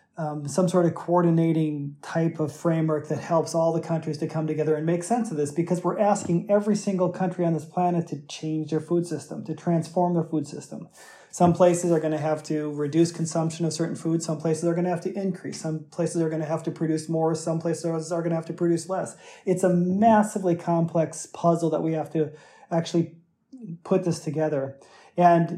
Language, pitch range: English, 155-175 Hz